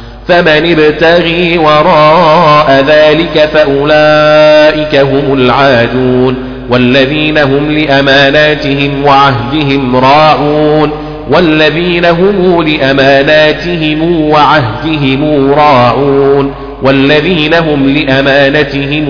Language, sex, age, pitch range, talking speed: Arabic, male, 40-59, 125-150 Hz, 65 wpm